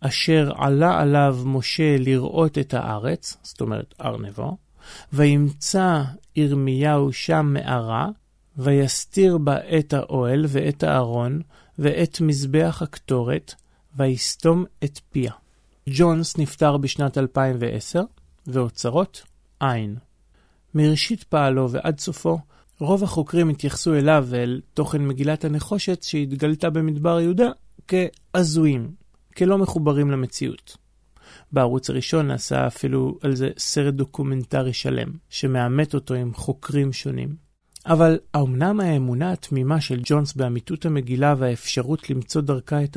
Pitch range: 130-160 Hz